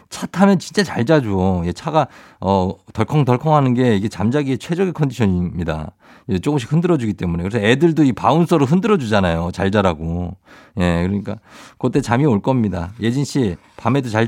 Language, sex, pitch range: Korean, male, 105-155 Hz